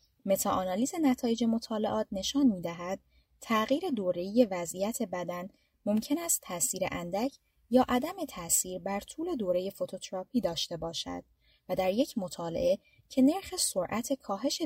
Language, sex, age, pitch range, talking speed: Persian, female, 20-39, 180-265 Hz, 125 wpm